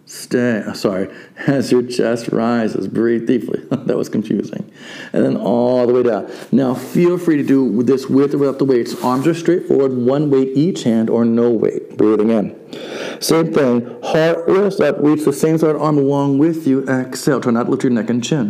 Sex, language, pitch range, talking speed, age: male, English, 120-150 Hz, 200 wpm, 50-69